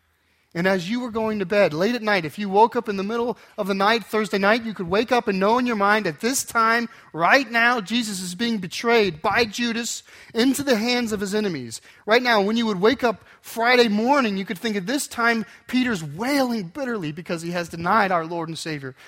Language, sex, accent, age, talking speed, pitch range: English, male, American, 30-49, 235 wpm, 145-220 Hz